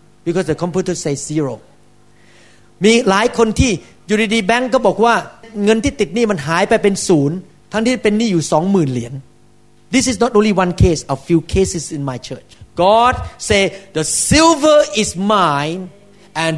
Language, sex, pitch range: Thai, male, 170-235 Hz